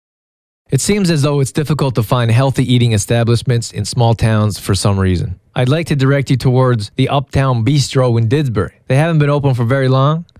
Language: English